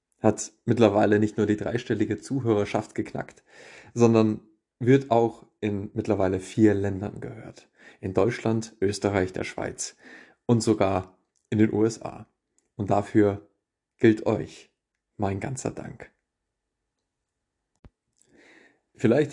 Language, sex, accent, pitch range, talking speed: German, male, German, 100-110 Hz, 105 wpm